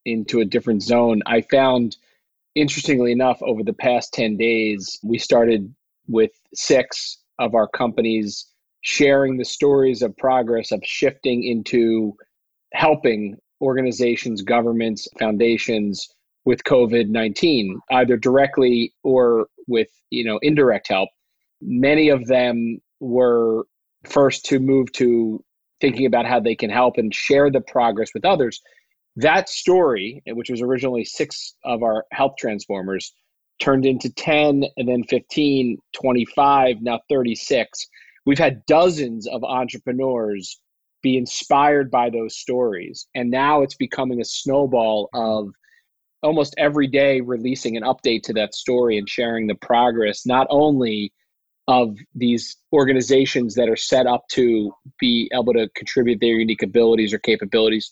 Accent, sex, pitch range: American, male, 115-135 Hz